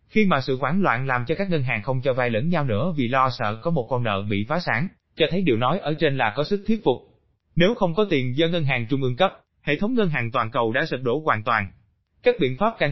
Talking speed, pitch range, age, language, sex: 290 wpm, 125-175 Hz, 20-39, Vietnamese, male